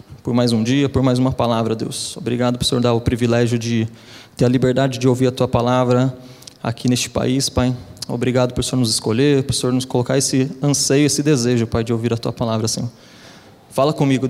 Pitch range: 120-155 Hz